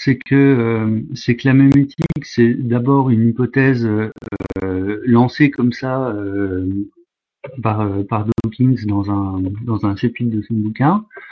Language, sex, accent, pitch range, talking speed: French, male, French, 110-140 Hz, 150 wpm